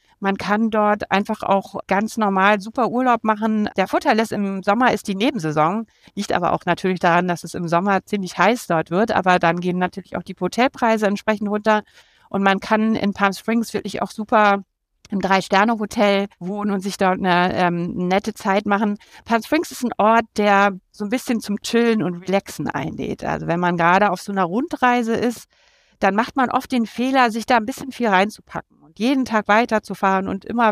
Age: 60-79